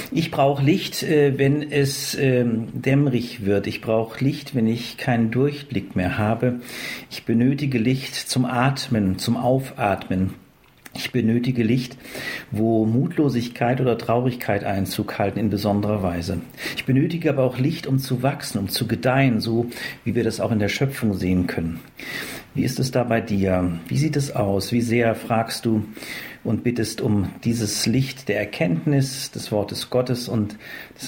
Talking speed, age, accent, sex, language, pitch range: 160 wpm, 50-69, German, male, German, 110-135 Hz